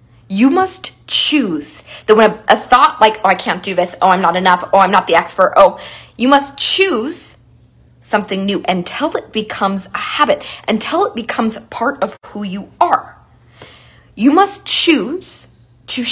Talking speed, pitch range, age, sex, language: 170 wpm, 175-250 Hz, 20-39, female, English